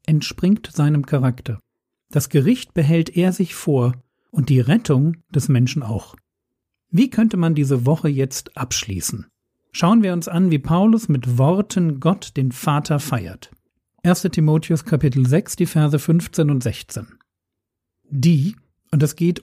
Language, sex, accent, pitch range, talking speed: German, male, German, 135-175 Hz, 145 wpm